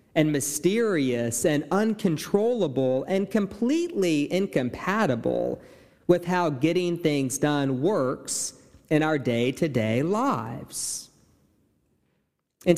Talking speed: 85 wpm